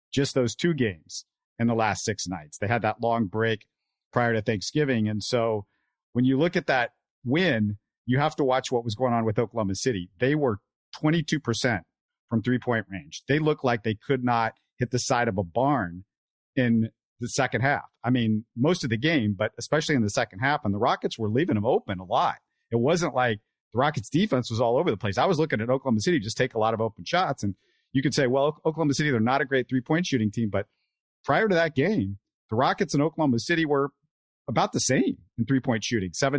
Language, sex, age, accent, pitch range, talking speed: English, male, 50-69, American, 115-145 Hz, 225 wpm